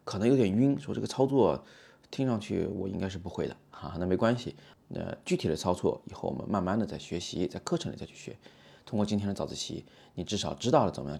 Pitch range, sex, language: 80-105 Hz, male, Chinese